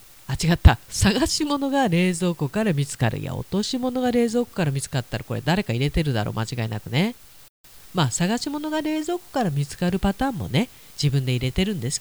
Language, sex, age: Japanese, female, 40-59